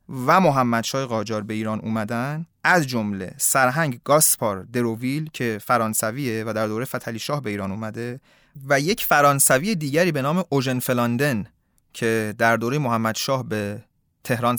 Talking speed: 150 wpm